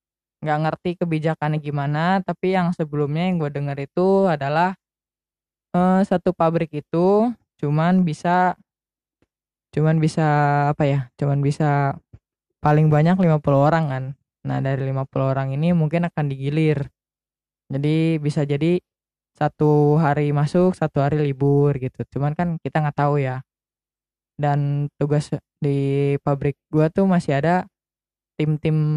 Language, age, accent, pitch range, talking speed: Indonesian, 20-39, native, 145-165 Hz, 130 wpm